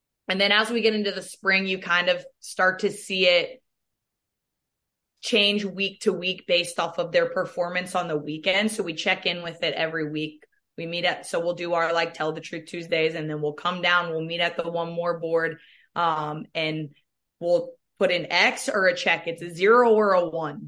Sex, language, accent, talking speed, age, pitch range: female, English, American, 215 wpm, 20-39, 170-190 Hz